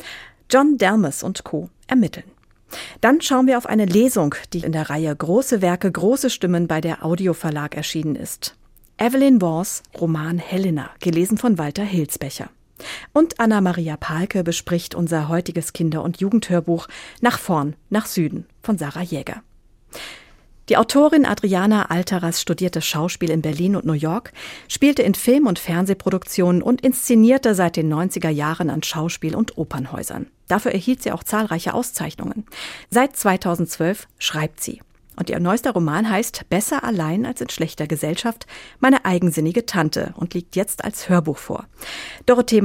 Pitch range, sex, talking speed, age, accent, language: 165-230 Hz, female, 150 wpm, 50-69, German, German